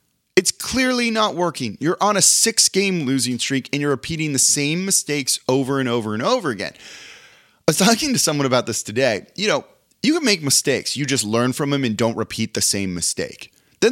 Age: 30-49